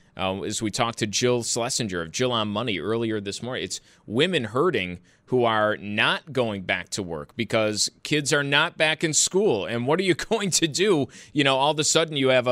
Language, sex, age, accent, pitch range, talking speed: English, male, 30-49, American, 115-160 Hz, 220 wpm